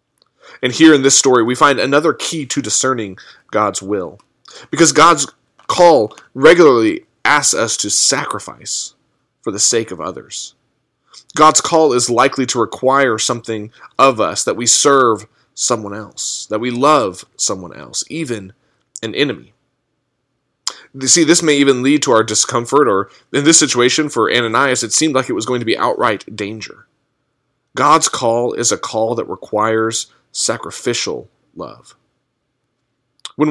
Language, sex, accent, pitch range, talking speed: English, male, American, 115-145 Hz, 150 wpm